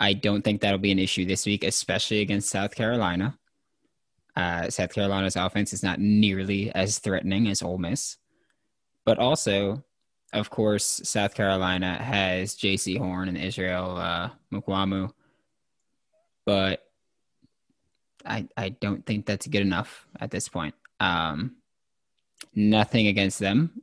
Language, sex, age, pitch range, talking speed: English, male, 10-29, 95-105 Hz, 135 wpm